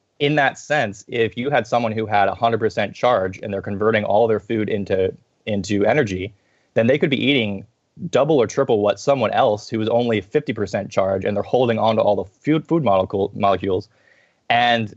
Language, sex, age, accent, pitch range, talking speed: English, male, 20-39, American, 100-115 Hz, 195 wpm